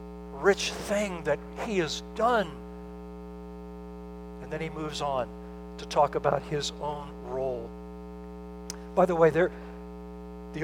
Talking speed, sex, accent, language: 120 wpm, male, American, English